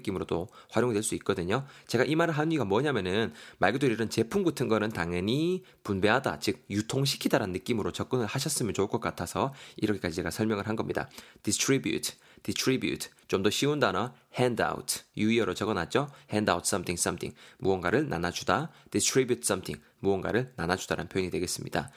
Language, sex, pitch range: Korean, male, 100-145 Hz